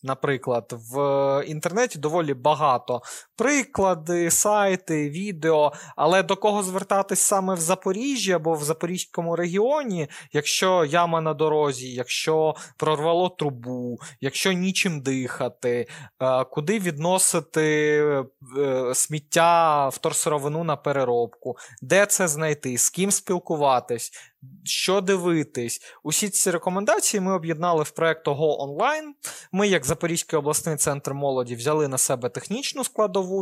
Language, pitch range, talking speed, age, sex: Ukrainian, 135-185 Hz, 115 wpm, 20-39, male